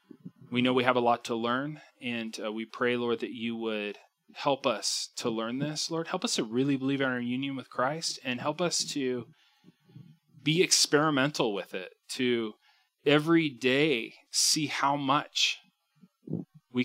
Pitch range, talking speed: 110-150 Hz, 165 wpm